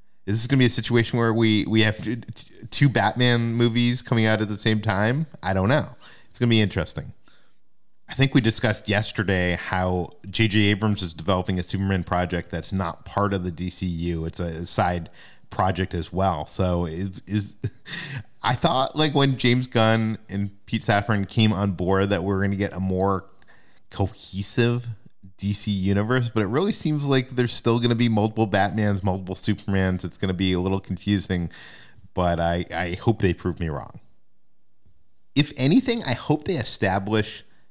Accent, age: American, 30-49